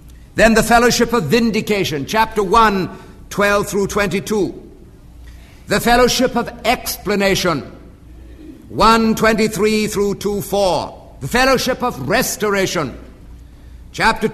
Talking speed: 100 wpm